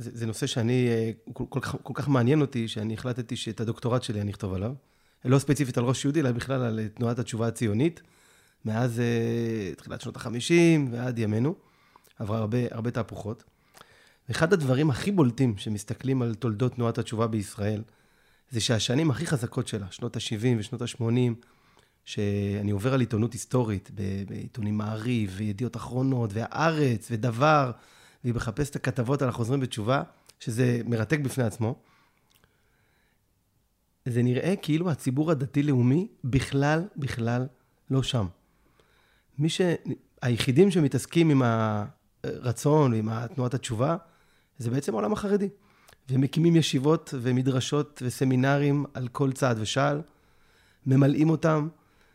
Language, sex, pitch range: Hebrew, male, 115-140 Hz